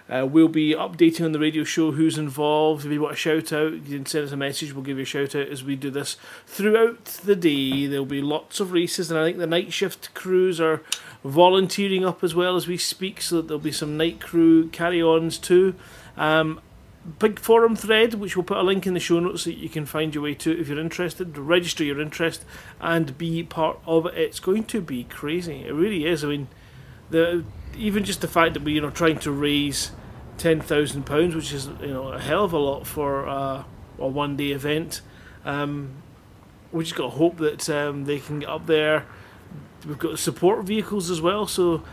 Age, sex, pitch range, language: 40-59, male, 145-175 Hz, English